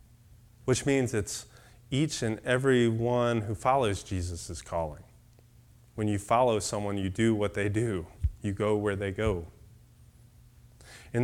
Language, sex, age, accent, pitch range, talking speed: English, male, 30-49, American, 105-125 Hz, 140 wpm